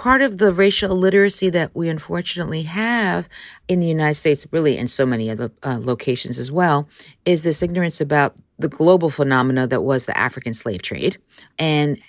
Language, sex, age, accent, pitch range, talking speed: English, female, 50-69, American, 140-185 Hz, 180 wpm